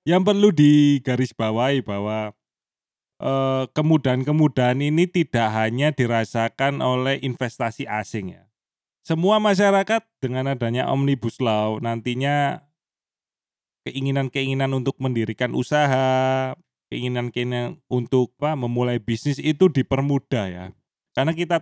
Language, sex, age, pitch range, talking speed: Indonesian, male, 20-39, 115-145 Hz, 90 wpm